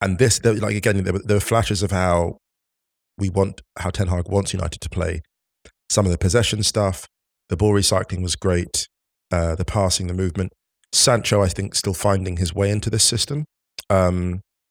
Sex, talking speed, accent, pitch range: male, 185 wpm, British, 90-105 Hz